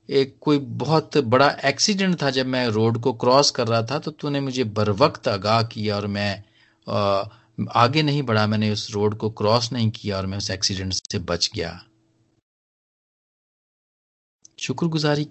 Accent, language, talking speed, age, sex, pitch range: native, Hindi, 160 wpm, 40-59, male, 105-130 Hz